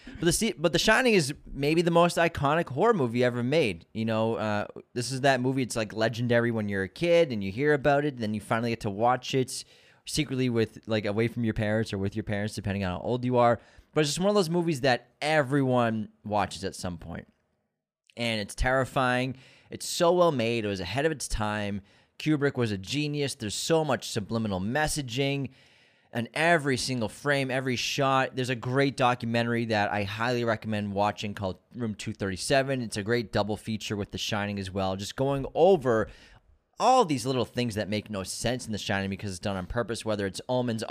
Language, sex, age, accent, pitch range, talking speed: English, male, 30-49, American, 105-130 Hz, 210 wpm